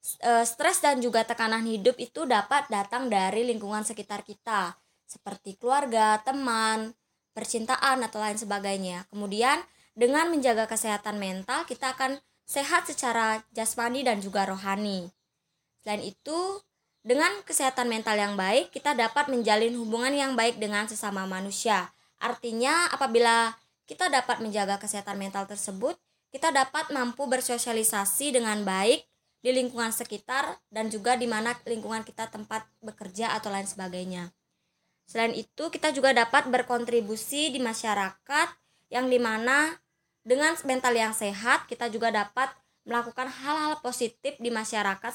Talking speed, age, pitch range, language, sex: 130 wpm, 20-39, 210-255 Hz, Indonesian, male